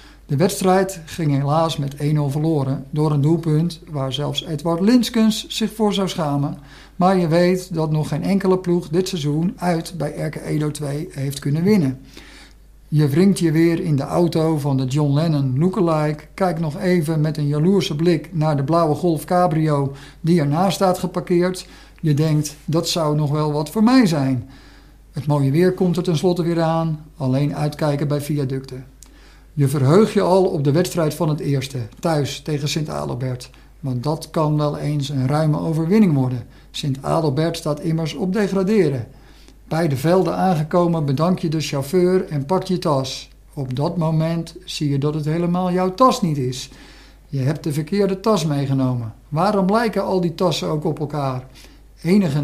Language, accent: Dutch, Dutch